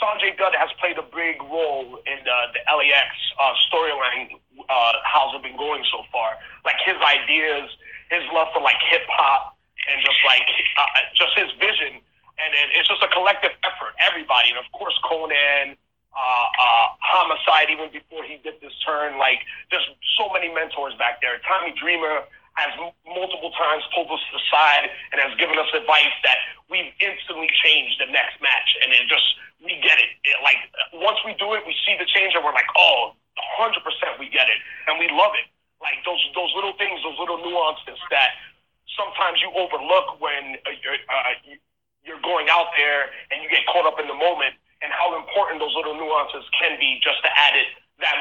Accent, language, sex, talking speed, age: American, English, male, 190 wpm, 30-49